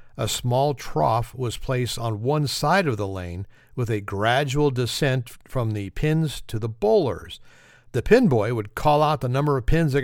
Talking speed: 190 wpm